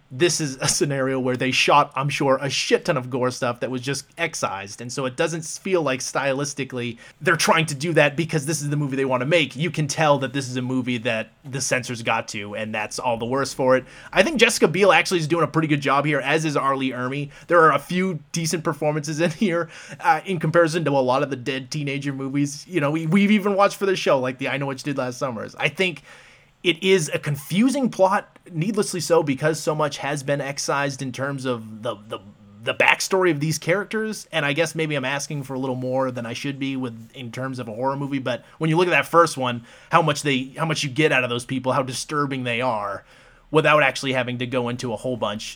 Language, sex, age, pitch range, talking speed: English, male, 30-49, 130-165 Hz, 250 wpm